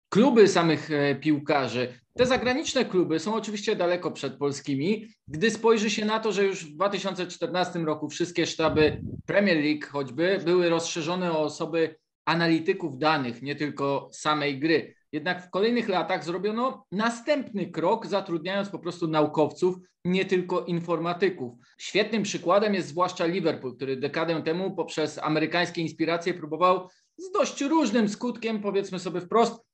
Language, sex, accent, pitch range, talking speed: Polish, male, native, 155-205 Hz, 140 wpm